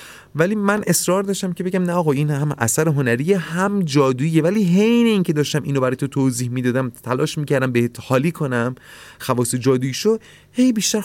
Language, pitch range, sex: Persian, 110-160 Hz, male